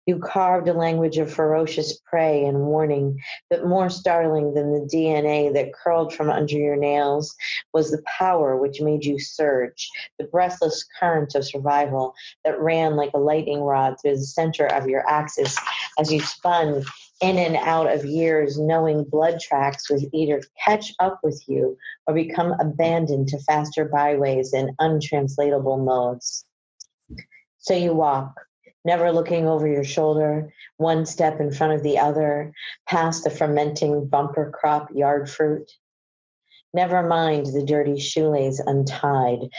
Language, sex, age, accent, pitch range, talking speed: English, female, 40-59, American, 140-160 Hz, 150 wpm